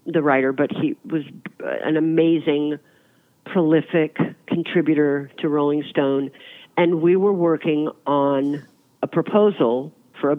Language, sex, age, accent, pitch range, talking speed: English, female, 50-69, American, 135-170 Hz, 120 wpm